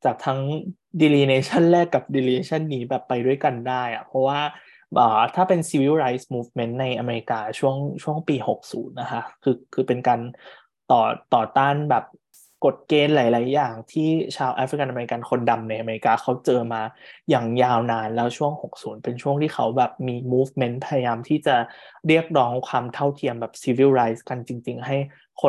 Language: Thai